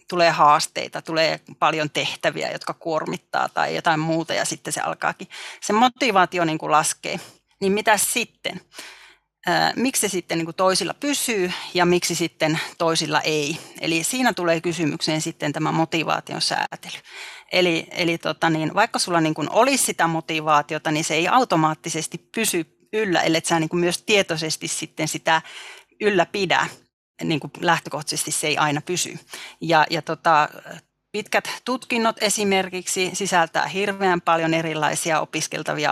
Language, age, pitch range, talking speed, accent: Finnish, 30-49, 160-190 Hz, 140 wpm, native